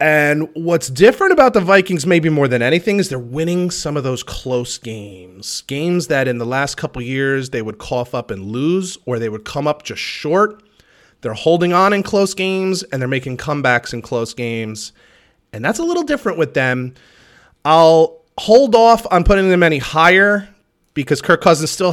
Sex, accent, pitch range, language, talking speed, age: male, American, 125-180 Hz, English, 195 wpm, 30-49